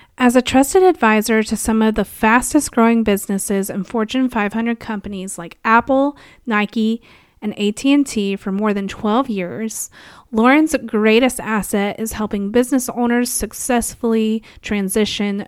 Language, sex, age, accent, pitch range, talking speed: English, female, 30-49, American, 200-235 Hz, 130 wpm